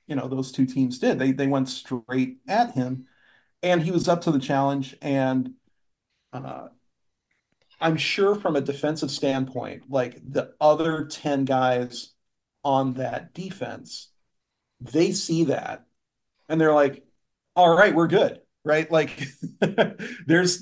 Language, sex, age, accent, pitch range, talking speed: English, male, 40-59, American, 130-155 Hz, 140 wpm